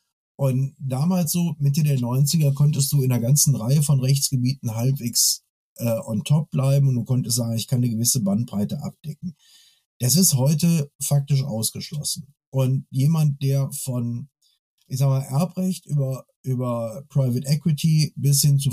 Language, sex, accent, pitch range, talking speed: German, male, German, 130-155 Hz, 155 wpm